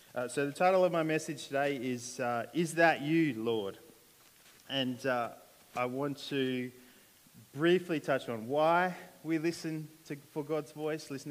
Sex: male